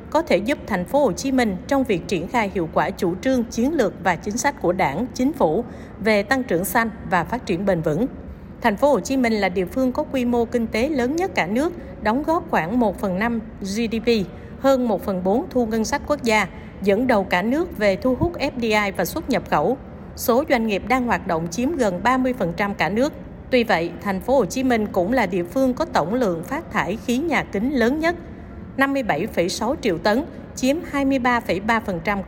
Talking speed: 205 wpm